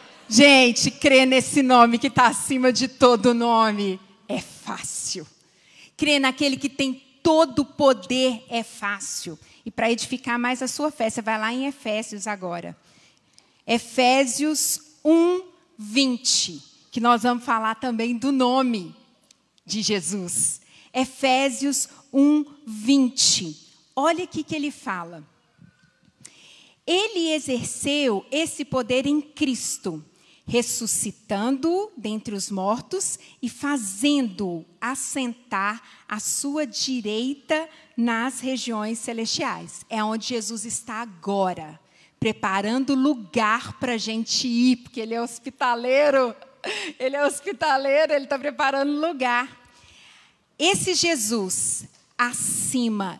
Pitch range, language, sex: 215-275 Hz, Portuguese, female